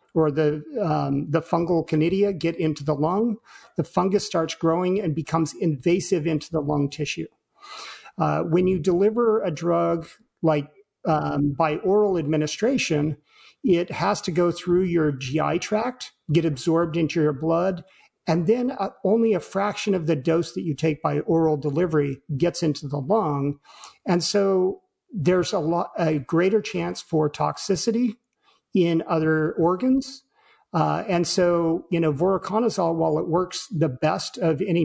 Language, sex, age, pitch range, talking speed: English, male, 50-69, 155-190 Hz, 155 wpm